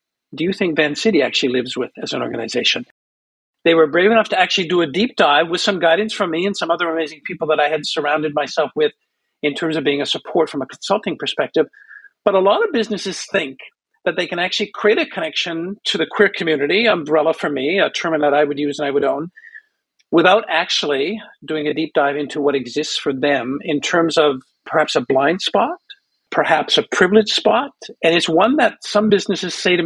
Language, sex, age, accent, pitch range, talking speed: English, male, 50-69, American, 160-220 Hz, 215 wpm